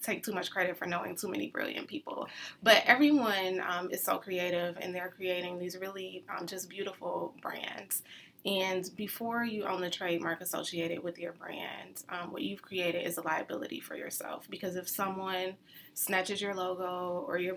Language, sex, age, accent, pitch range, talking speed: English, female, 20-39, American, 180-195 Hz, 180 wpm